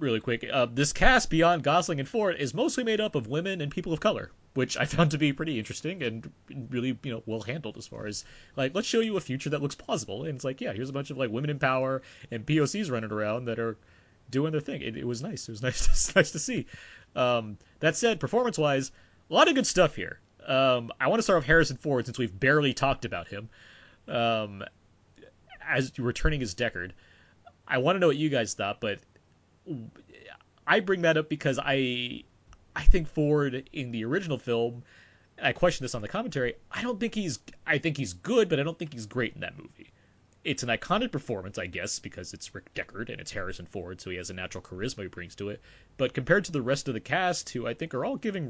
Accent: American